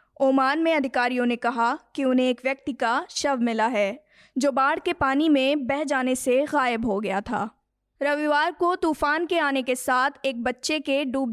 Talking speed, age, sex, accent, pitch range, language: 190 wpm, 20-39, female, native, 250-295 Hz, Hindi